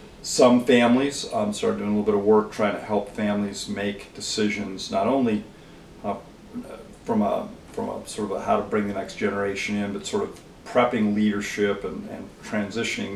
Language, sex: English, male